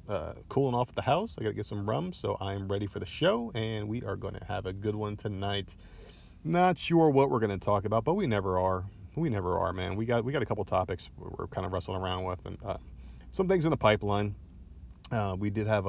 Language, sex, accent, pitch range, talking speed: English, male, American, 90-110 Hz, 255 wpm